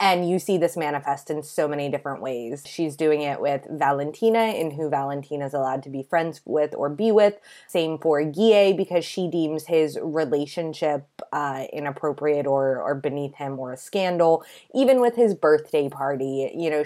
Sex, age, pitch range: female, 20-39, 140-175 Hz